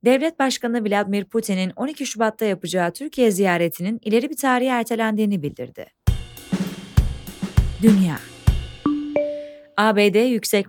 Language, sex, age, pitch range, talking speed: Turkish, female, 30-49, 195-255 Hz, 95 wpm